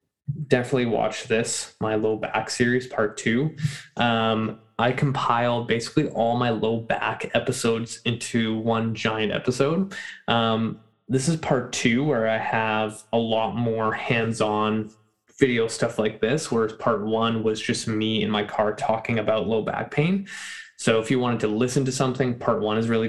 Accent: American